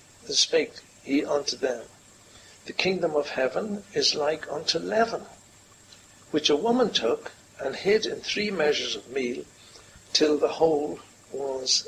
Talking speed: 140 wpm